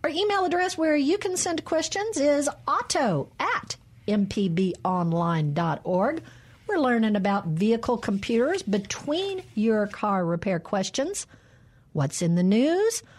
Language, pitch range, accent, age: English, 185-275 Hz, American, 50-69